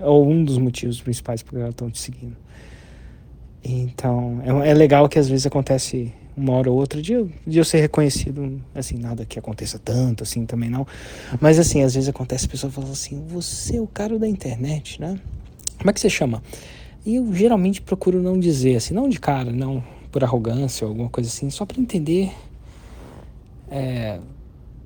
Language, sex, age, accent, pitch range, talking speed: Portuguese, male, 20-39, Brazilian, 120-160 Hz, 190 wpm